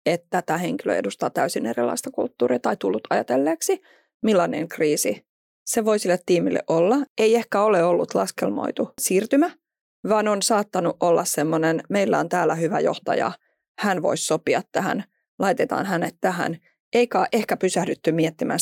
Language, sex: Finnish, female